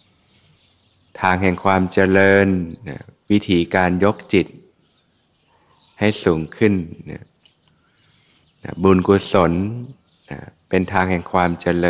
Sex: male